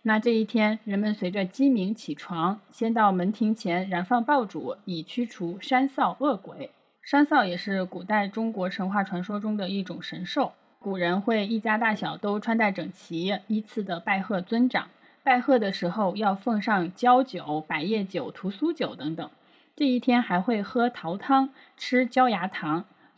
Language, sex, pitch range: Chinese, female, 180-250 Hz